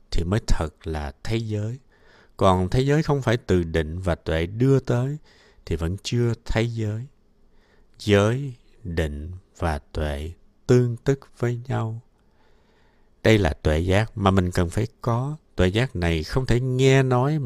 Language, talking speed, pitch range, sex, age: Vietnamese, 160 wpm, 85-120 Hz, male, 60-79